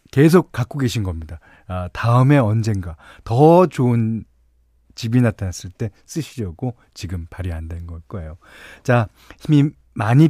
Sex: male